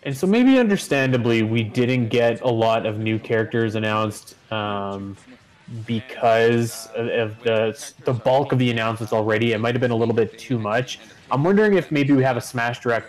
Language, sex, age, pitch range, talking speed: English, male, 20-39, 110-135 Hz, 190 wpm